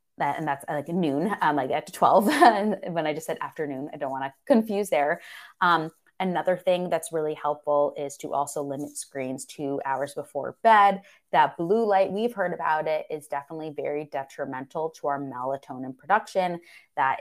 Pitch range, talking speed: 140-190 Hz, 180 wpm